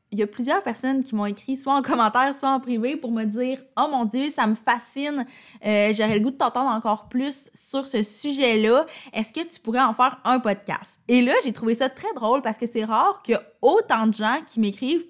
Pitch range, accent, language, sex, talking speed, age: 195-255 Hz, Canadian, French, female, 240 wpm, 20-39